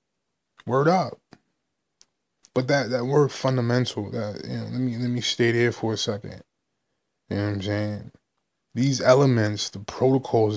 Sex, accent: male, American